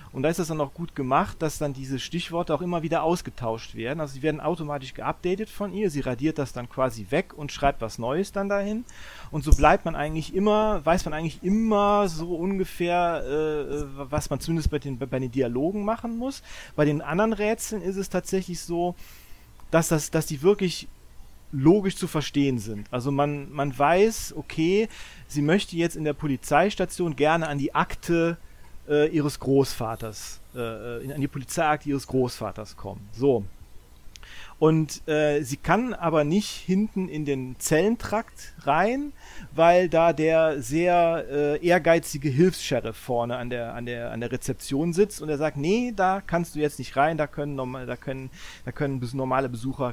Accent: German